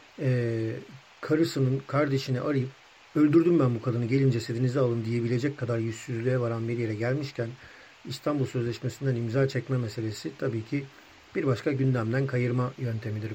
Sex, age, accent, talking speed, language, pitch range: male, 50-69, native, 130 wpm, Turkish, 115-135 Hz